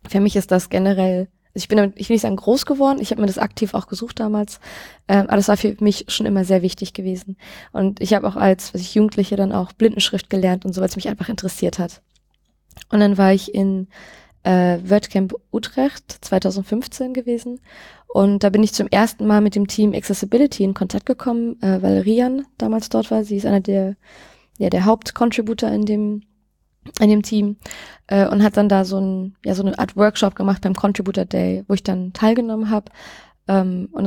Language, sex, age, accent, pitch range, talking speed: German, female, 20-39, German, 195-215 Hz, 210 wpm